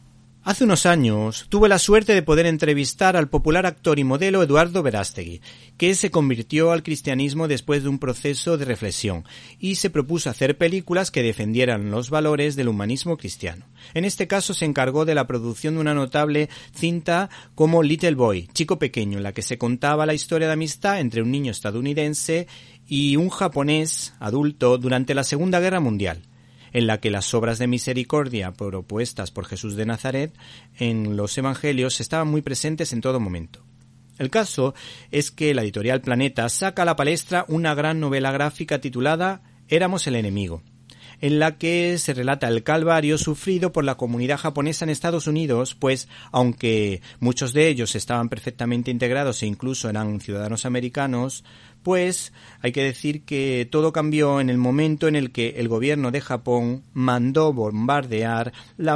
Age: 40-59